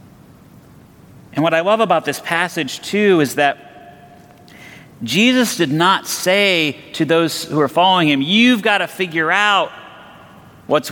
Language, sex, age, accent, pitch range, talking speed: English, male, 40-59, American, 140-185 Hz, 135 wpm